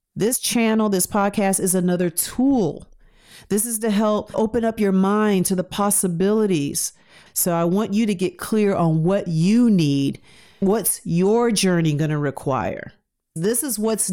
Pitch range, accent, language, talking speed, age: 165-205 Hz, American, English, 160 wpm, 40-59